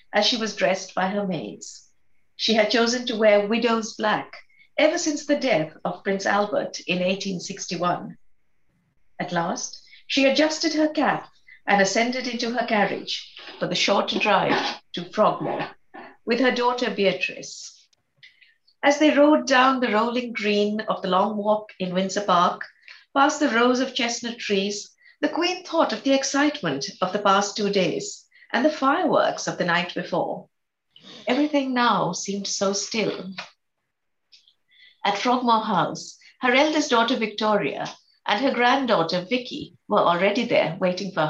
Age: 60-79